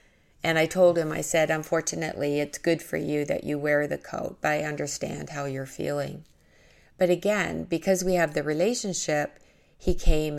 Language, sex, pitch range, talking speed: English, female, 150-170 Hz, 180 wpm